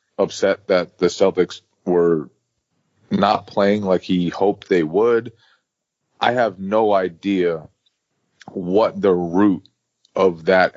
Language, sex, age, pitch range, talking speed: English, male, 30-49, 85-100 Hz, 115 wpm